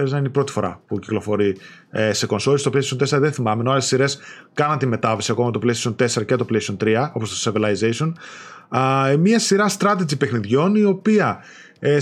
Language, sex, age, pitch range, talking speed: Greek, male, 30-49, 125-205 Hz, 190 wpm